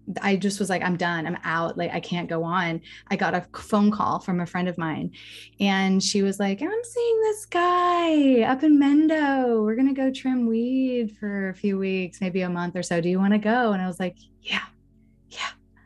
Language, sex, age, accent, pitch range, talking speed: English, female, 20-39, American, 180-225 Hz, 220 wpm